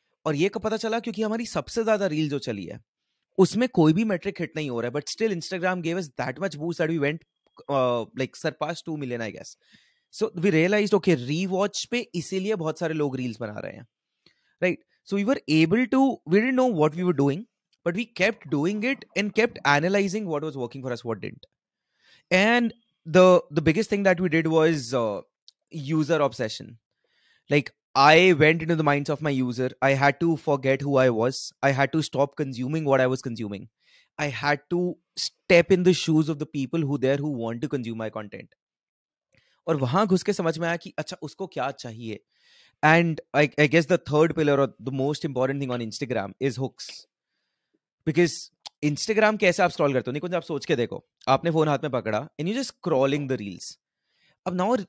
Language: English